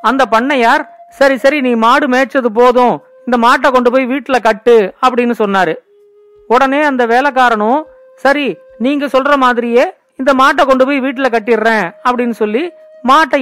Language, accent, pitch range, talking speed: Tamil, native, 230-280 Hz, 125 wpm